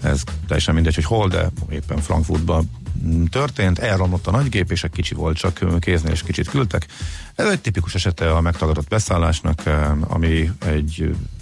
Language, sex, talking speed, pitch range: Hungarian, male, 165 wpm, 85-100 Hz